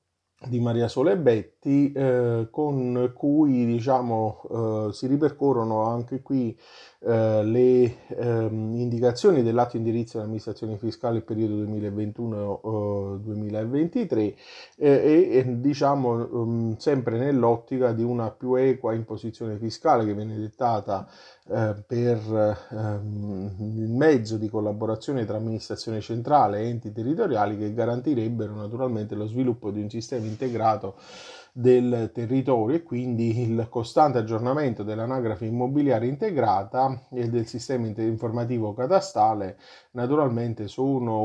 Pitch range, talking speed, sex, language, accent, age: 110-125 Hz, 110 wpm, male, Italian, native, 30-49